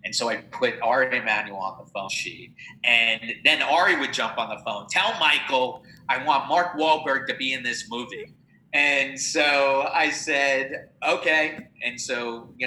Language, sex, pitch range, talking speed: English, male, 110-140 Hz, 175 wpm